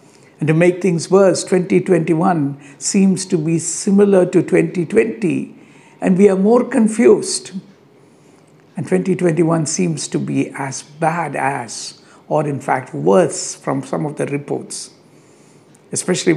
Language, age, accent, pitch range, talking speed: English, 60-79, Indian, 150-190 Hz, 130 wpm